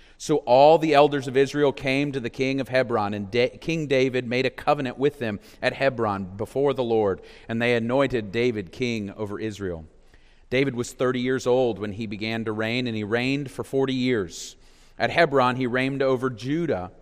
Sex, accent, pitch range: male, American, 110-135 Hz